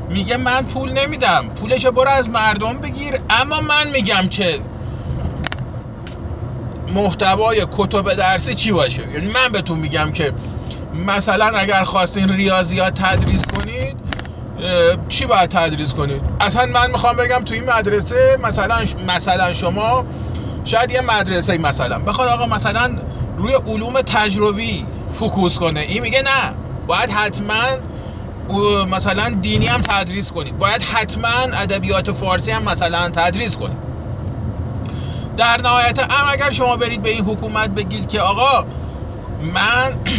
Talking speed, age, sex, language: 130 wpm, 30-49, male, Persian